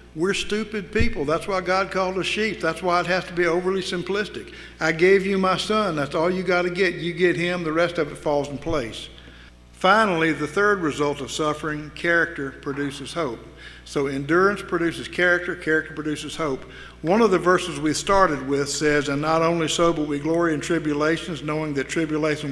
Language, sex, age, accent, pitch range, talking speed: English, male, 60-79, American, 140-175 Hz, 195 wpm